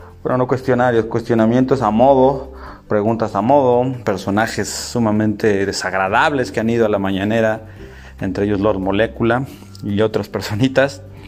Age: 30-49